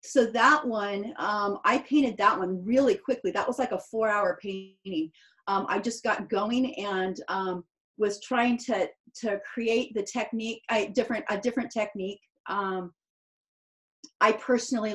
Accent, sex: American, female